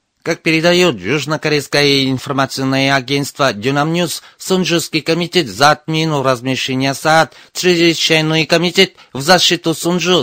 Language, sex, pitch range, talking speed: Russian, male, 140-165 Hz, 105 wpm